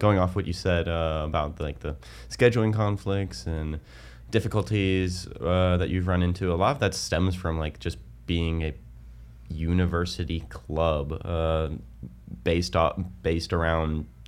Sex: male